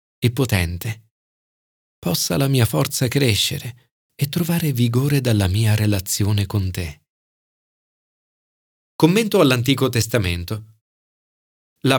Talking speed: 95 wpm